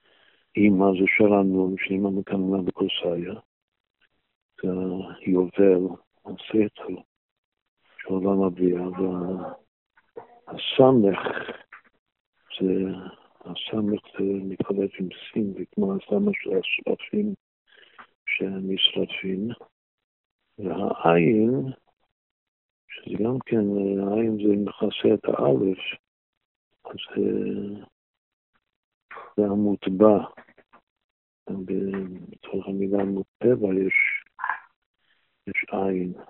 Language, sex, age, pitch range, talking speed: Hebrew, male, 50-69, 95-105 Hz, 55 wpm